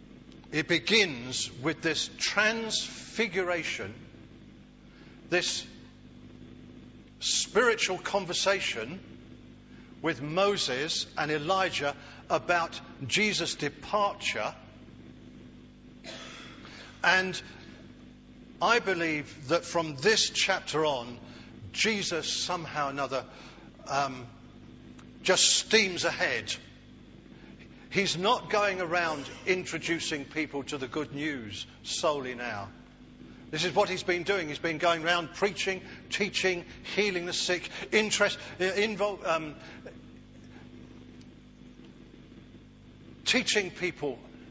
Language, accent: English, British